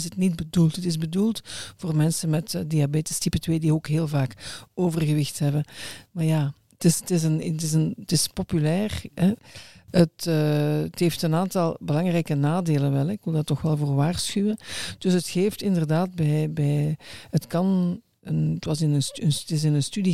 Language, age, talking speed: Dutch, 50-69, 175 wpm